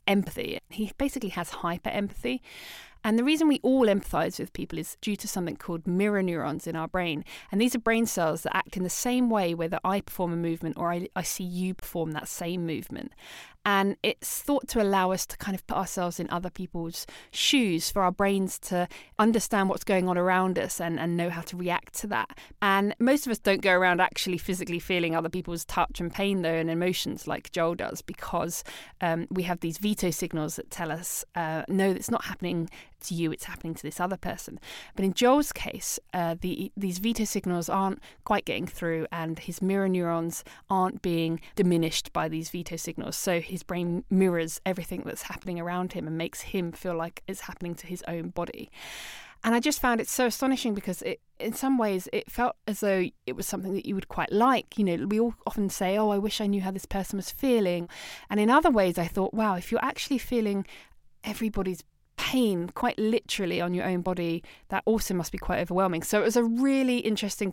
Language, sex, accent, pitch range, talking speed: English, female, British, 170-210 Hz, 215 wpm